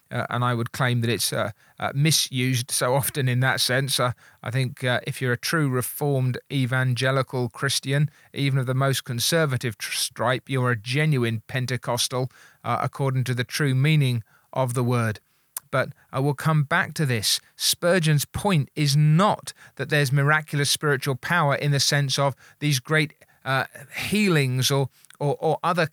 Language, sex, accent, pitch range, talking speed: English, male, British, 130-165 Hz, 170 wpm